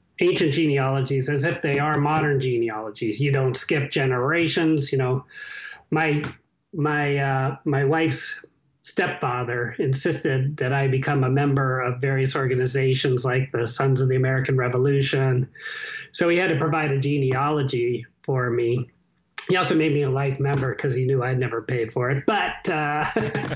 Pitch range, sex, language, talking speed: 125-160 Hz, male, English, 155 wpm